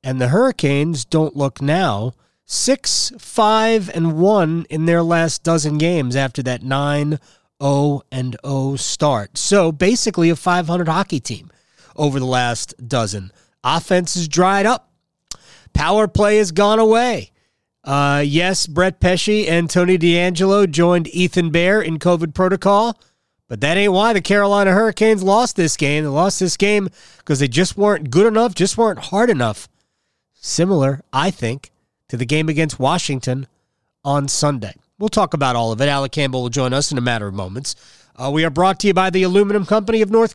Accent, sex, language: American, male, English